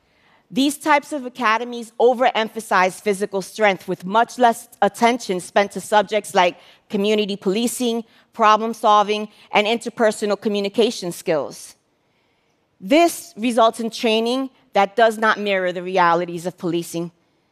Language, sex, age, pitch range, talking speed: English, female, 40-59, 180-235 Hz, 115 wpm